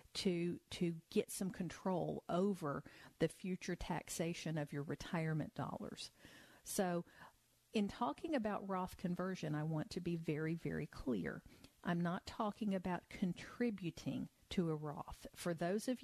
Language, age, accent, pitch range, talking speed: English, 50-69, American, 165-205 Hz, 140 wpm